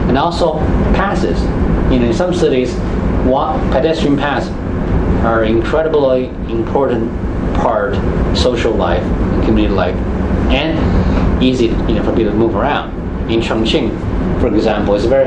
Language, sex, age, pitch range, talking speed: English, male, 30-49, 90-110 Hz, 140 wpm